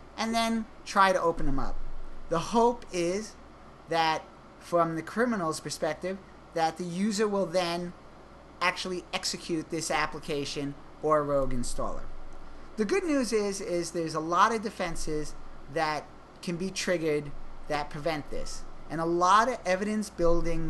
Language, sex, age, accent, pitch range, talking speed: English, male, 30-49, American, 150-190 Hz, 150 wpm